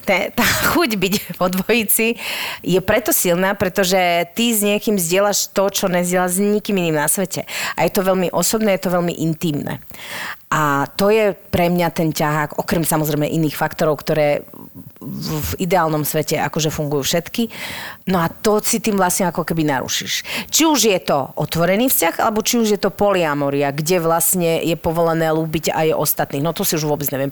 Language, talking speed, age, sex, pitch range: Slovak, 180 wpm, 30-49, female, 155-205 Hz